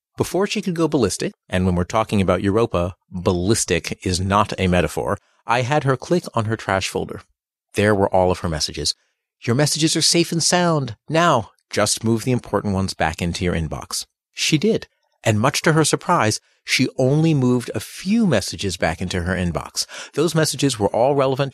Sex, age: male, 40-59